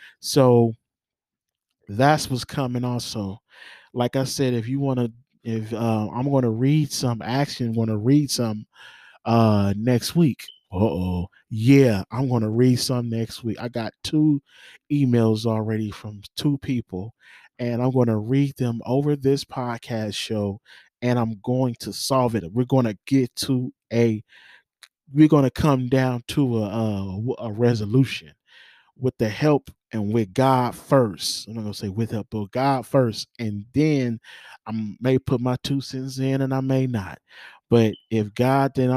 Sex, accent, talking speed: male, American, 170 wpm